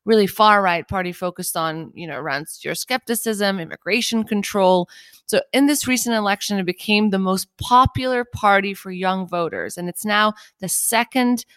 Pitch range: 175-220 Hz